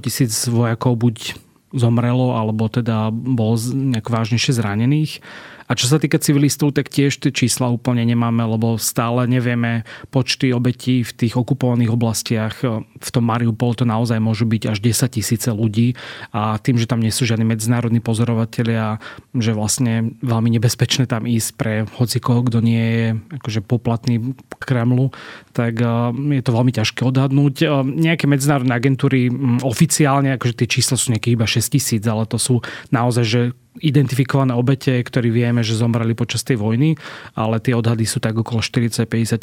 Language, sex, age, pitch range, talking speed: Slovak, male, 30-49, 115-130 Hz, 160 wpm